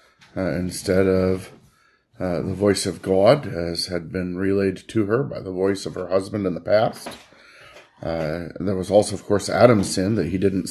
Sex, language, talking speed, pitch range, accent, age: male, English, 190 wpm, 90-105 Hz, American, 40-59